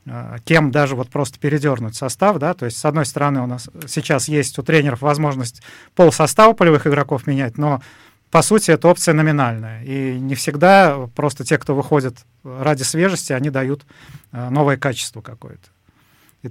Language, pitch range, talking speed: Russian, 140-165 Hz, 160 wpm